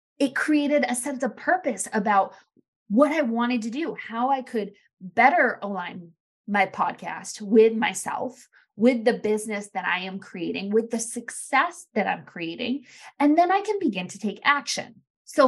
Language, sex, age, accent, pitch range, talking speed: English, female, 20-39, American, 215-275 Hz, 165 wpm